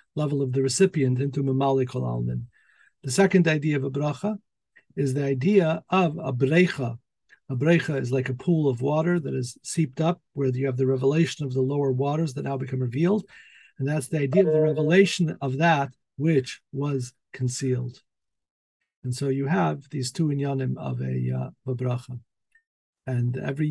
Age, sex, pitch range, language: 50-69, male, 130-160 Hz, English